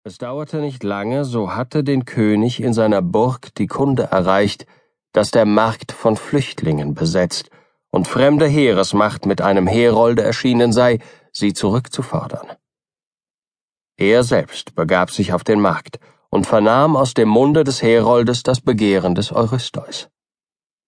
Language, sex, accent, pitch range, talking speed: German, male, German, 105-145 Hz, 140 wpm